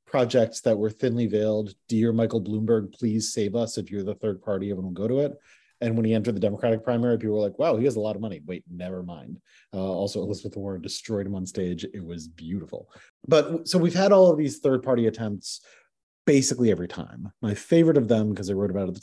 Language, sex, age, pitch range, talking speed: English, male, 30-49, 105-130 Hz, 240 wpm